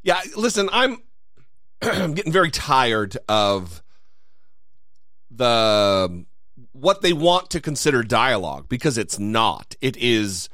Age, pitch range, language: 40-59, 120-170 Hz, English